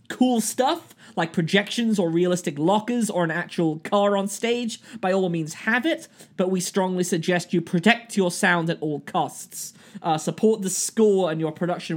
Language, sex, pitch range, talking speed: English, male, 155-210 Hz, 180 wpm